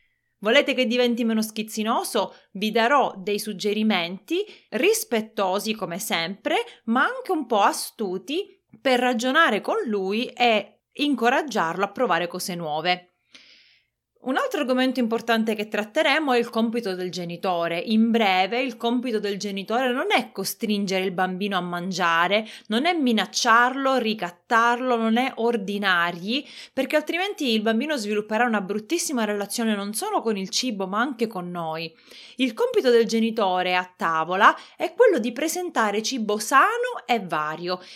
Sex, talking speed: female, 140 wpm